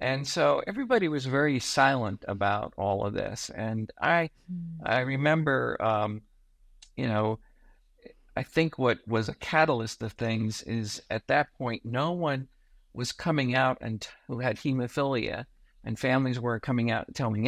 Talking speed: 150 wpm